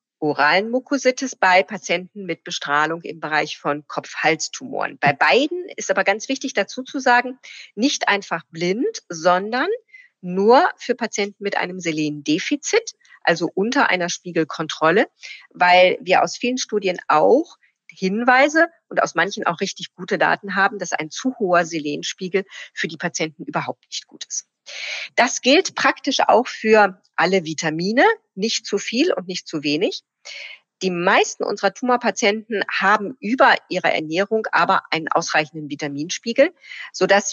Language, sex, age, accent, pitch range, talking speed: German, female, 40-59, German, 165-230 Hz, 140 wpm